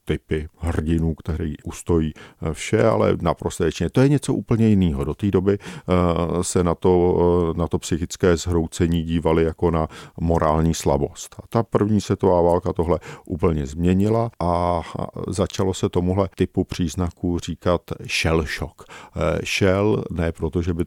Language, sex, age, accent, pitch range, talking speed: Czech, male, 50-69, native, 80-100 Hz, 140 wpm